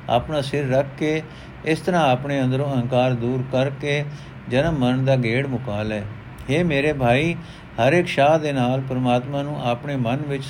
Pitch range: 130-155 Hz